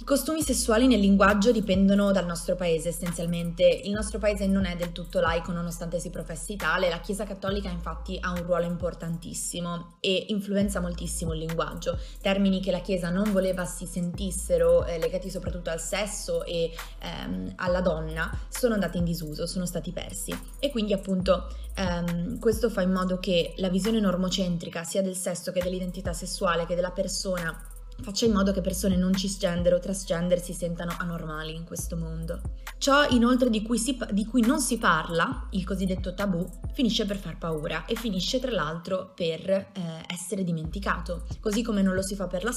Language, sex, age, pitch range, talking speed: Italian, female, 20-39, 175-210 Hz, 180 wpm